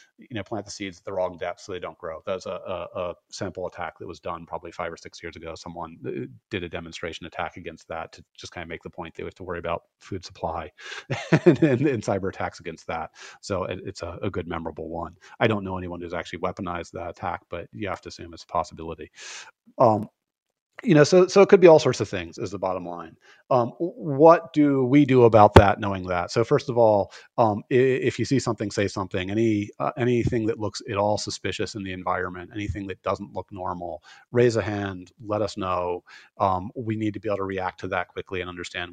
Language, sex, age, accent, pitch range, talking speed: English, male, 30-49, American, 90-120 Hz, 240 wpm